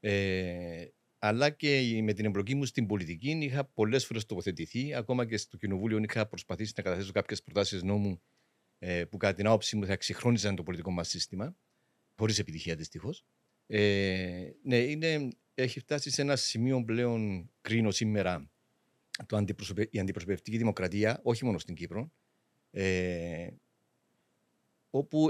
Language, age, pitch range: Greek, 50-69, 95-125 Hz